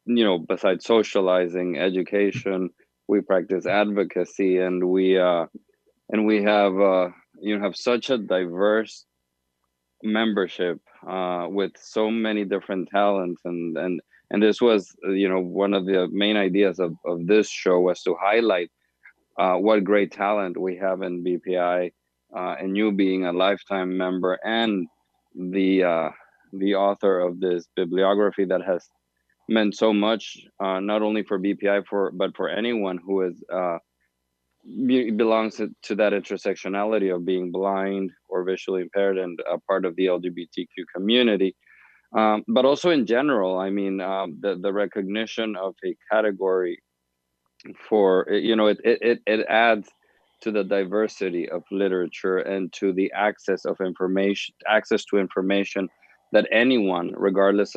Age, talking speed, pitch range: 20-39, 150 wpm, 90-105 Hz